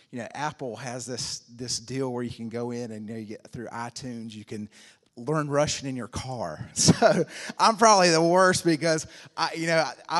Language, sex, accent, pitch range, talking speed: English, male, American, 125-175 Hz, 210 wpm